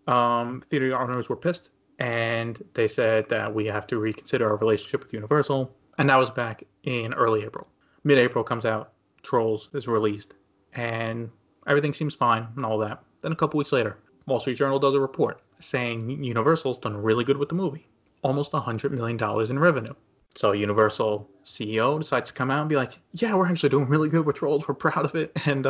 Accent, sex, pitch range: American, male, 110-145 Hz